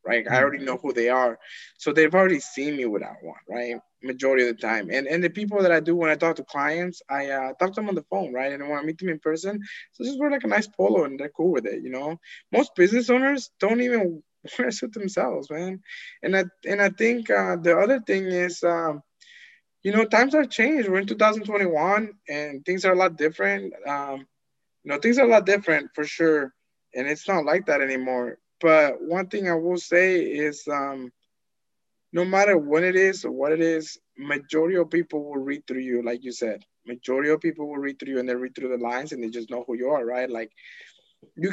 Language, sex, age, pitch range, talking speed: English, male, 20-39, 135-190 Hz, 235 wpm